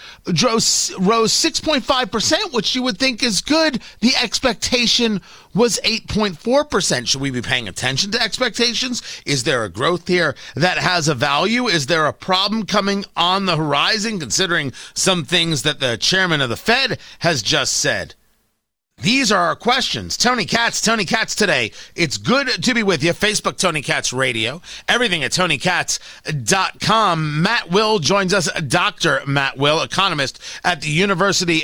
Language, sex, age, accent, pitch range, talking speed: English, male, 40-59, American, 150-220 Hz, 155 wpm